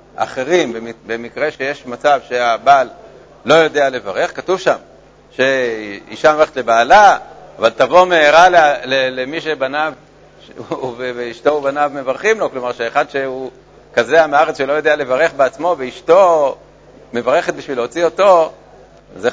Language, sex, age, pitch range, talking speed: Hebrew, male, 50-69, 130-165 Hz, 130 wpm